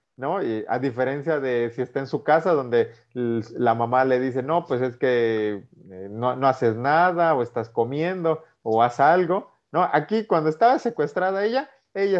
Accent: Mexican